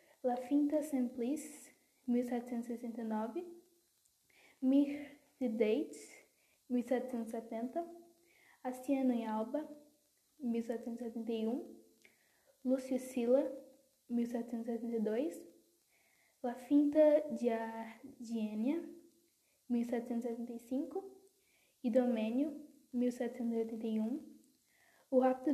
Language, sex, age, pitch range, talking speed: Portuguese, female, 10-29, 235-290 Hz, 55 wpm